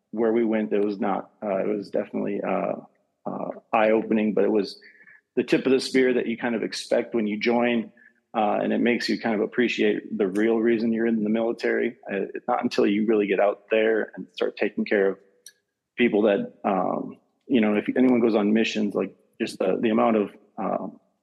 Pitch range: 105-120 Hz